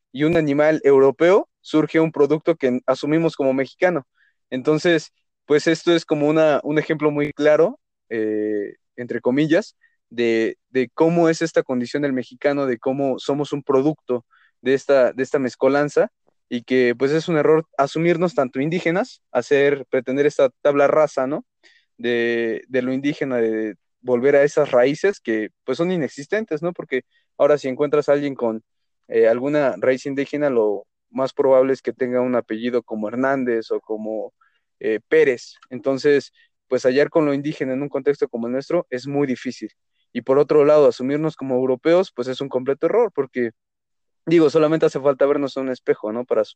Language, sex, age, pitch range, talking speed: Spanish, male, 20-39, 125-155 Hz, 175 wpm